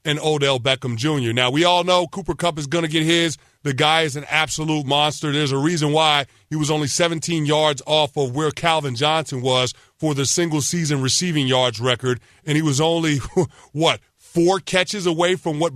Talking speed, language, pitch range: 200 wpm, English, 140-170 Hz